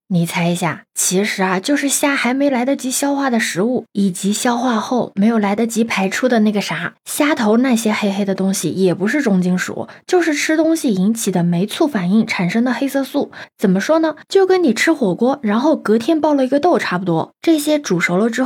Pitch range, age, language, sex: 190-260 Hz, 20-39, Chinese, female